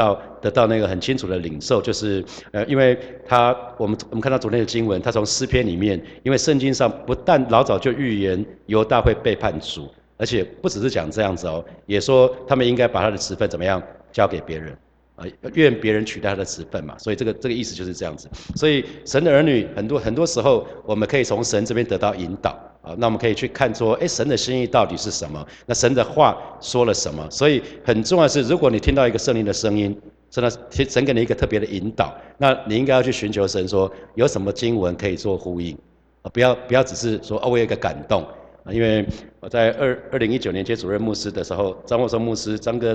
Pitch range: 100-125 Hz